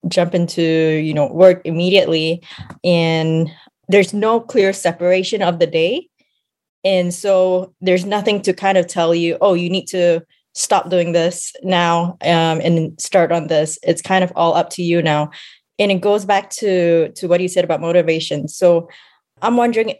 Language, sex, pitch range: English, female, 160-185 Hz